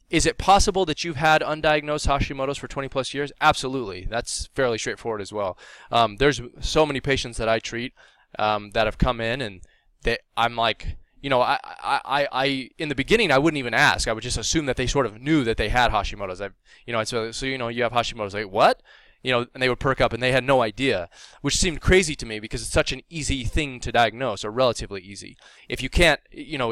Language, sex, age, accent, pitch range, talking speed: English, male, 20-39, American, 115-150 Hz, 240 wpm